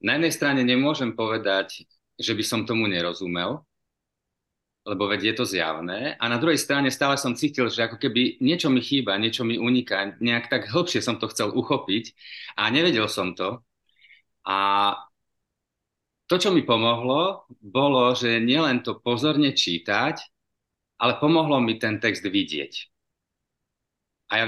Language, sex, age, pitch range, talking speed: Slovak, male, 40-59, 105-135 Hz, 150 wpm